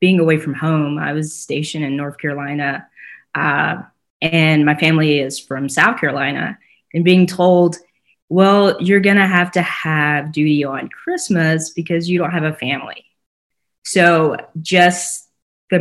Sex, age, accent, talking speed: female, 20-39, American, 150 wpm